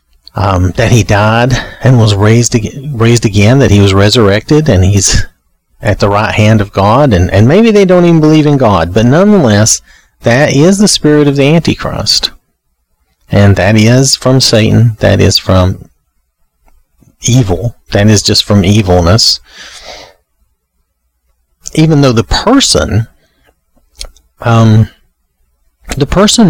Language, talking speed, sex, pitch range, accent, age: English, 135 wpm, male, 85-120 Hz, American, 40-59